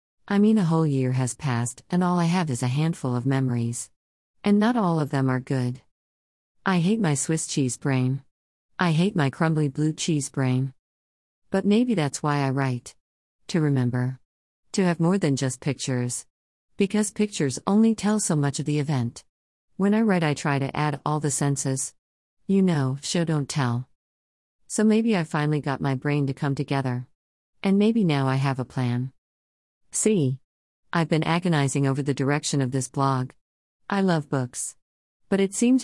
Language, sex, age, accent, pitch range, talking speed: English, female, 50-69, American, 125-170 Hz, 180 wpm